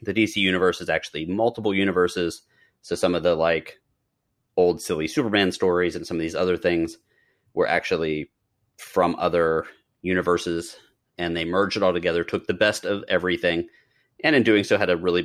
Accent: American